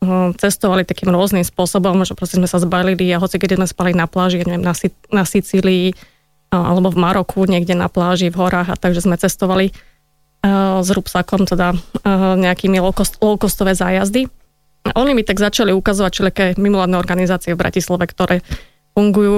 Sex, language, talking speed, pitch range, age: female, Slovak, 175 wpm, 180-200 Hz, 20-39